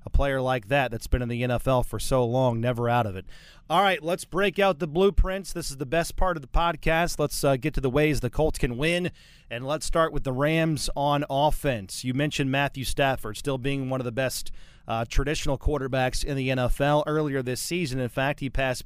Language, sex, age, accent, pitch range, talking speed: English, male, 30-49, American, 135-160 Hz, 230 wpm